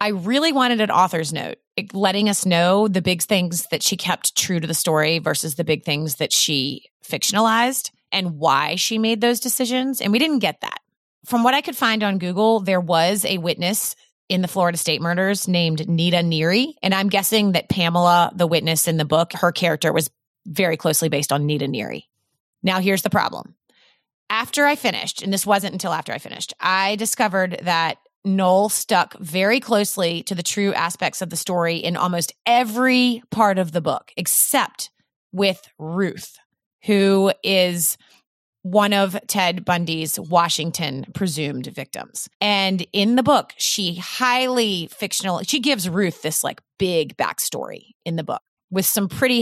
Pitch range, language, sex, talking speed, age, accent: 170-210 Hz, English, female, 170 wpm, 30-49, American